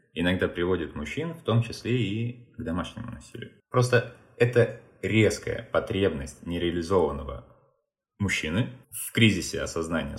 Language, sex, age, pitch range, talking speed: Russian, male, 20-39, 80-120 Hz, 110 wpm